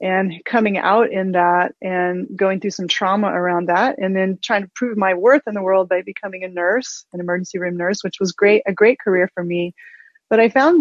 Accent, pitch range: American, 180-210 Hz